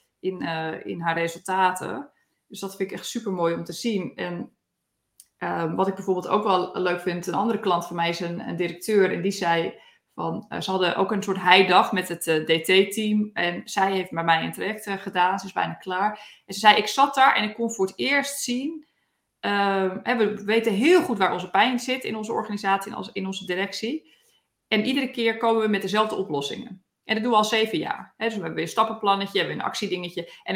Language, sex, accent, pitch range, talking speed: Dutch, female, Dutch, 185-240 Hz, 235 wpm